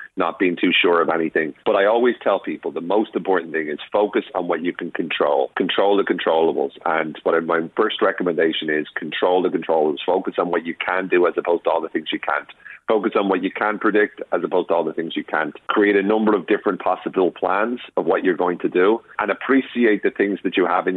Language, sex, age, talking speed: English, male, 40-59, 240 wpm